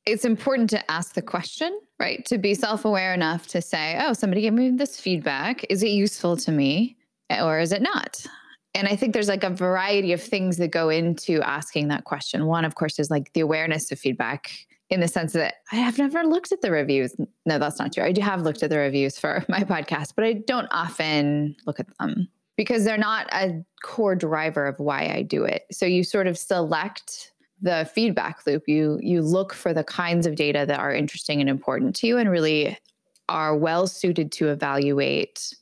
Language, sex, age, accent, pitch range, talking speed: English, female, 10-29, American, 155-205 Hz, 210 wpm